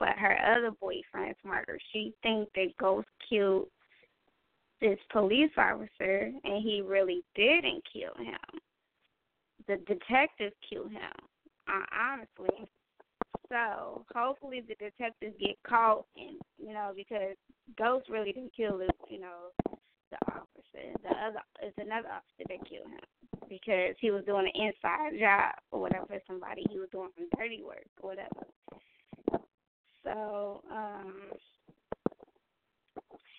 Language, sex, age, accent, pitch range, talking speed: English, female, 20-39, American, 200-245 Hz, 125 wpm